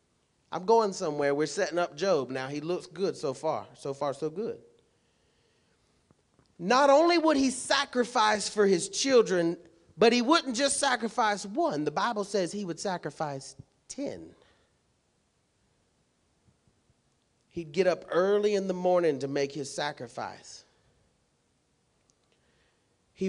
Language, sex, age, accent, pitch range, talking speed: English, male, 40-59, American, 150-205 Hz, 130 wpm